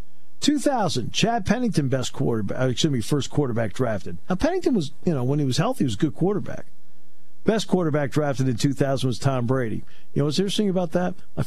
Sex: male